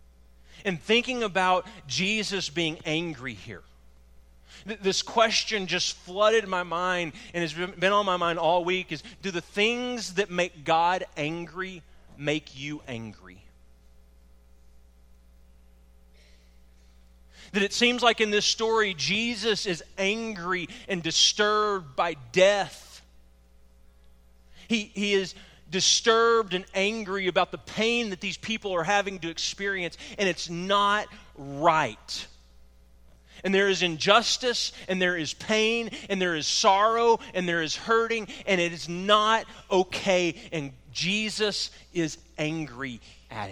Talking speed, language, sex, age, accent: 125 wpm, English, male, 30-49, American